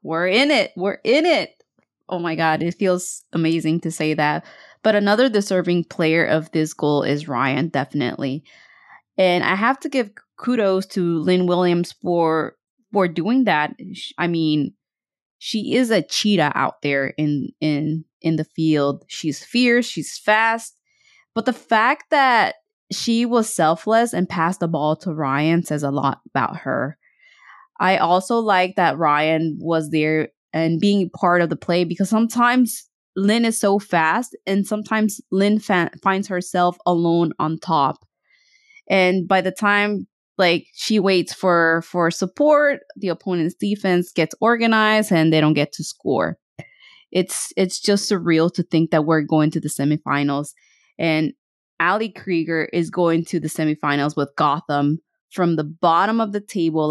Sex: female